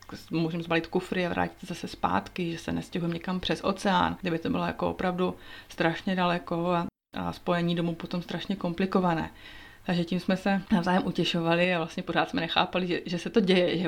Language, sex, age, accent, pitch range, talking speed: Czech, female, 30-49, native, 170-190 Hz, 190 wpm